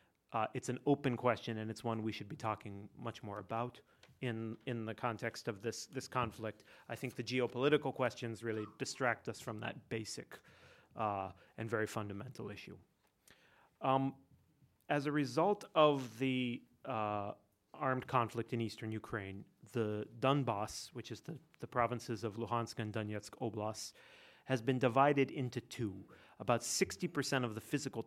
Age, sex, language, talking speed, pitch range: 30-49, male, English, 155 wpm, 110-130 Hz